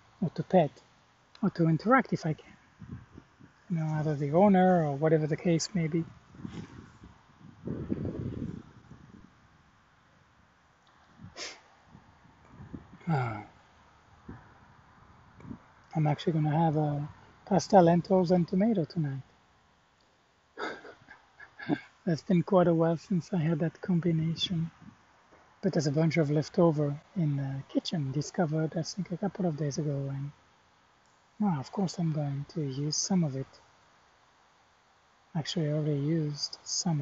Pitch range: 150-180 Hz